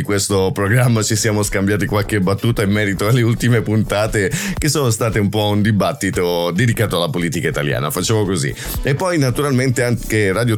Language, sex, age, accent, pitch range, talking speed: Italian, male, 30-49, native, 95-120 Hz, 170 wpm